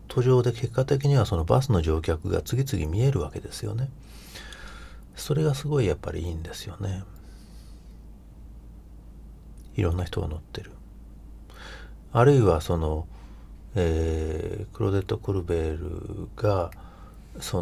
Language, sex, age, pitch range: Japanese, male, 40-59, 80-105 Hz